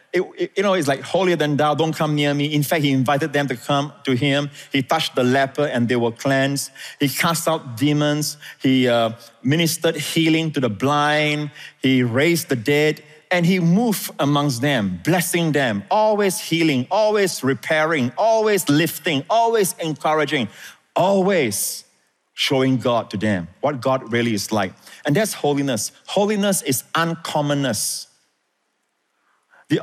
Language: English